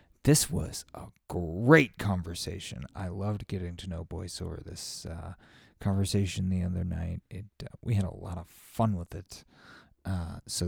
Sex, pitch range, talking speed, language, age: male, 90-115 Hz, 170 wpm, English, 30-49